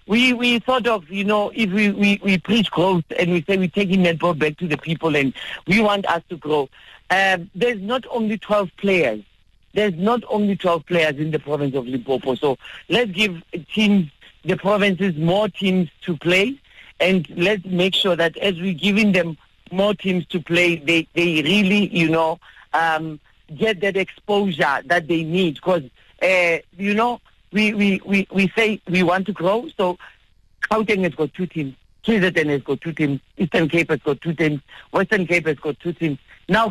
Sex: male